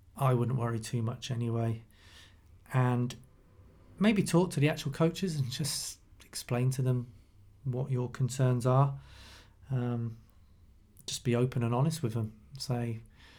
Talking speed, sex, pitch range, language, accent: 140 wpm, male, 115-140 Hz, English, British